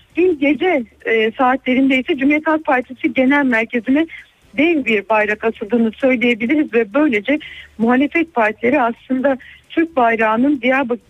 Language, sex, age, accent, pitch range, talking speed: Turkish, female, 60-79, native, 240-300 Hz, 115 wpm